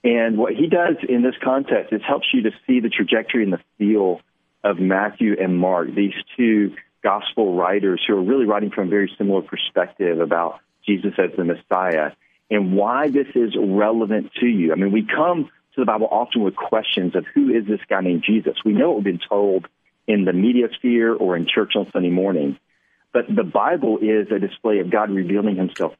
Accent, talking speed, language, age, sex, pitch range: American, 210 wpm, English, 40-59, male, 100-130 Hz